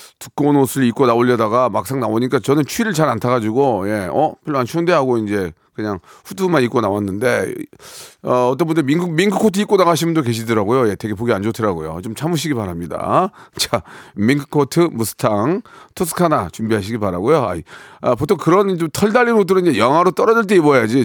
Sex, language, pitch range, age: male, Korean, 115-165 Hz, 40-59